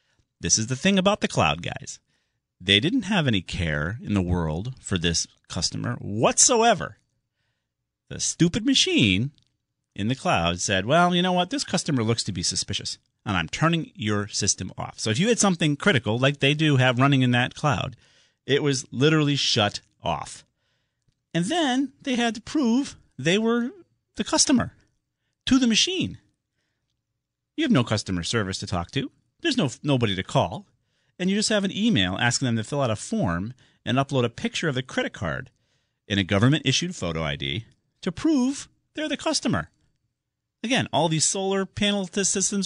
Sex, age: male, 40-59